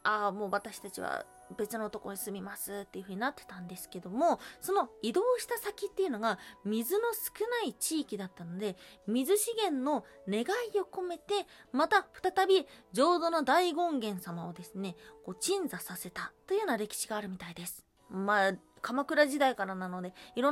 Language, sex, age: Japanese, female, 20-39